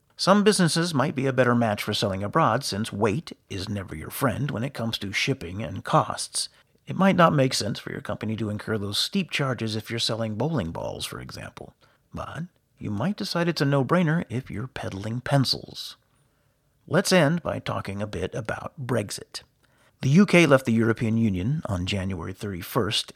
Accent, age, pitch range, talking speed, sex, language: American, 50-69, 110-150 Hz, 185 wpm, male, English